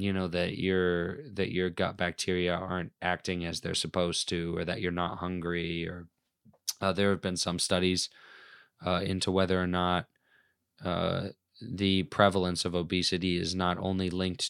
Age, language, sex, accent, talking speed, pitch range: 20-39, English, male, American, 160 wpm, 85-95 Hz